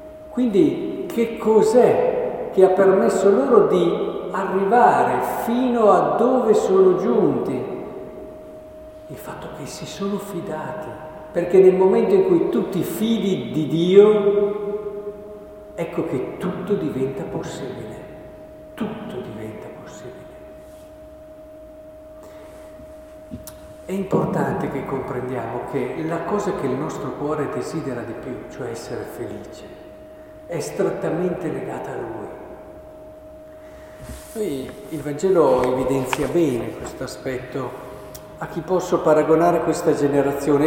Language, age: Italian, 50-69